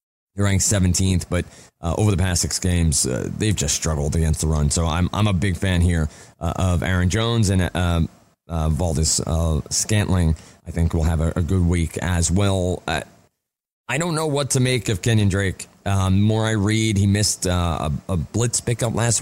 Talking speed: 210 wpm